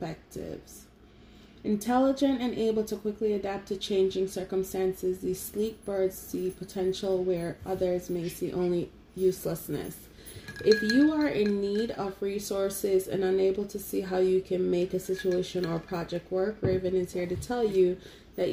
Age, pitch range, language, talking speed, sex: 30-49, 180-200 Hz, English, 150 wpm, female